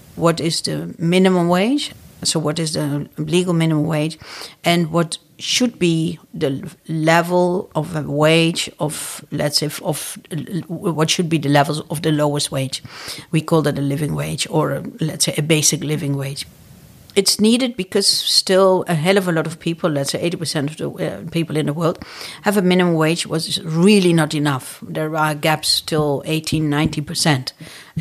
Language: English